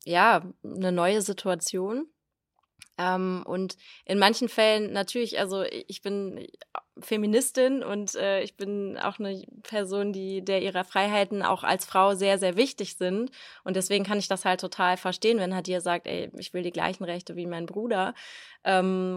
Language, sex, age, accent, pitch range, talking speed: German, female, 20-39, German, 180-200 Hz, 170 wpm